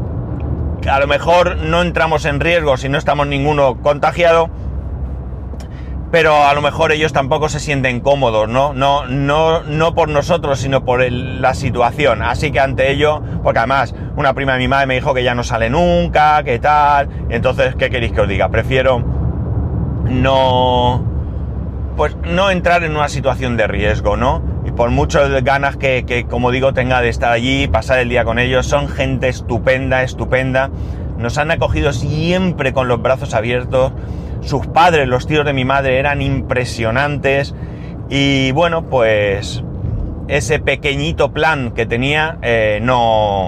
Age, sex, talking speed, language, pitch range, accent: 30-49, male, 160 wpm, Spanish, 110-140 Hz, Spanish